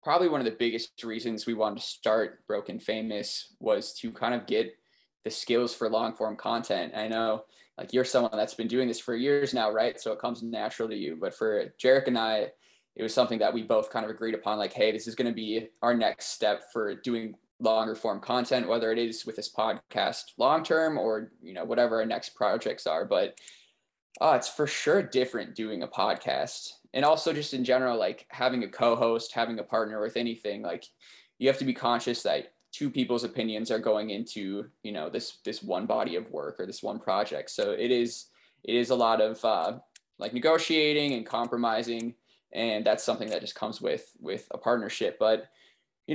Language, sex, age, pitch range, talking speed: English, male, 10-29, 115-130 Hz, 210 wpm